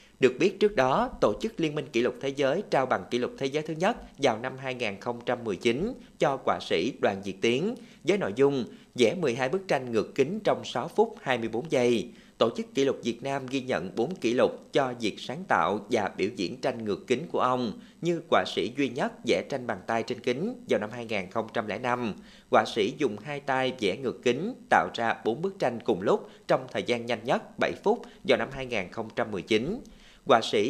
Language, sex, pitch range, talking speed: Vietnamese, male, 120-165 Hz, 210 wpm